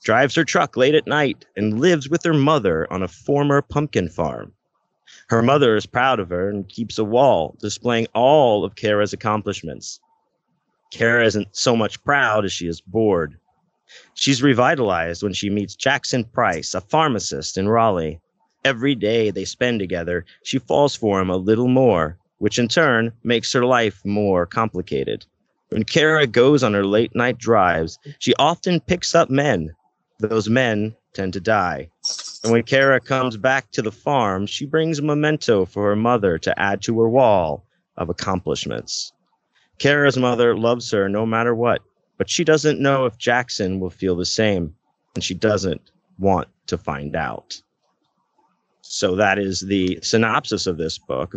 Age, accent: 30-49, American